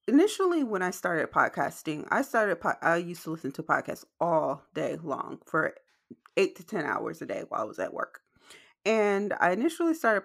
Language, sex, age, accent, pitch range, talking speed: English, female, 30-49, American, 160-225 Hz, 195 wpm